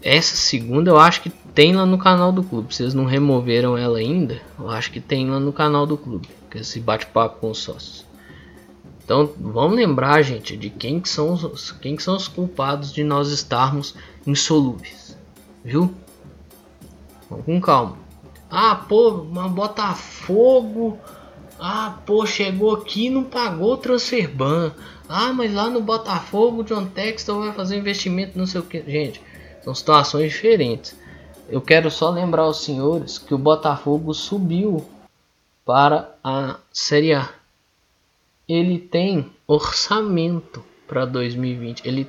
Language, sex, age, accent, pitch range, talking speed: Portuguese, male, 10-29, Brazilian, 130-190 Hz, 150 wpm